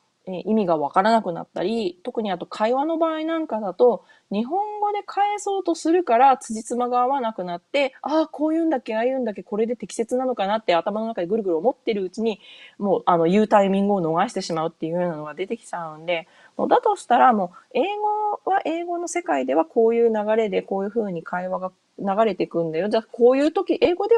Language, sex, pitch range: Japanese, female, 170-240 Hz